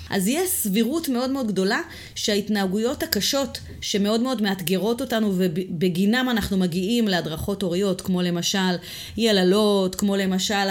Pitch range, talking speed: 180-235 Hz, 125 wpm